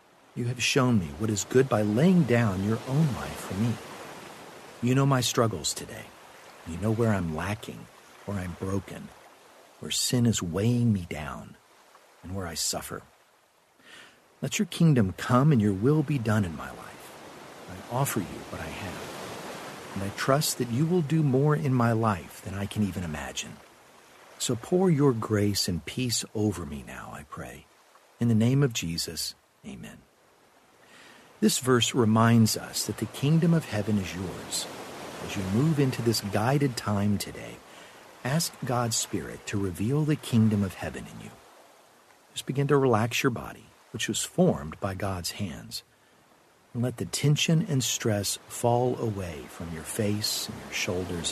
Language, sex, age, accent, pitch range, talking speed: English, male, 50-69, American, 100-130 Hz, 170 wpm